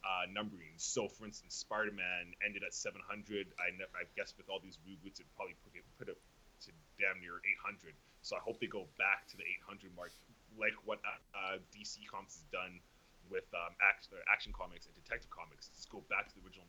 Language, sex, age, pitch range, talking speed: English, male, 20-39, 90-105 Hz, 210 wpm